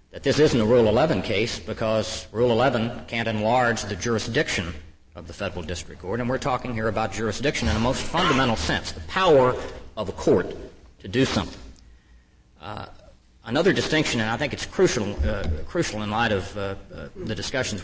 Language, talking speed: English, 185 wpm